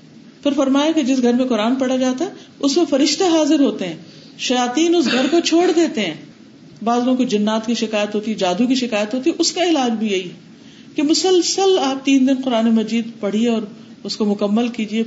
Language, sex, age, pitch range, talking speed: Urdu, female, 40-59, 220-295 Hz, 215 wpm